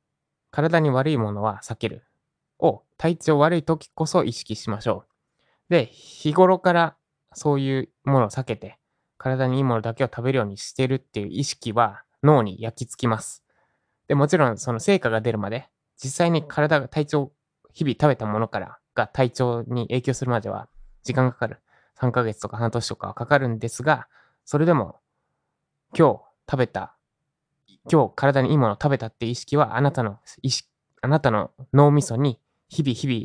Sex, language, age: male, Japanese, 20-39